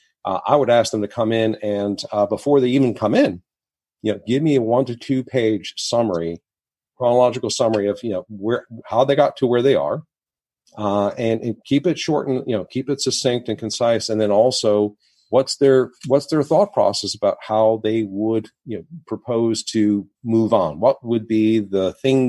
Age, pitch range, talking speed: 40-59, 105-125 Hz, 205 wpm